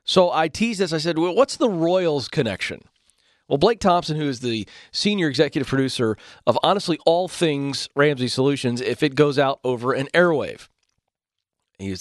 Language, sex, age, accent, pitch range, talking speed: English, male, 40-59, American, 115-165 Hz, 175 wpm